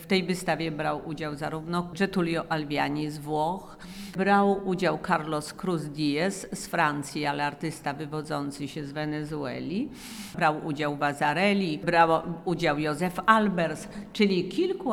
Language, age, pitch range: Polish, 50-69, 155-195 Hz